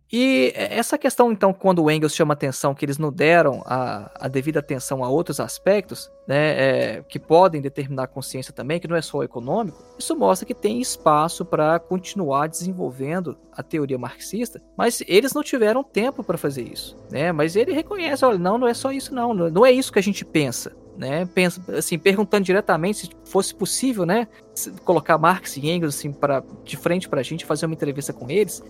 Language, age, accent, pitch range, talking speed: Portuguese, 20-39, Brazilian, 150-215 Hz, 190 wpm